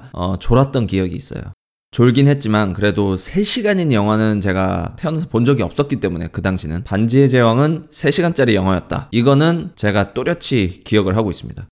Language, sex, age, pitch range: Korean, male, 20-39, 95-135 Hz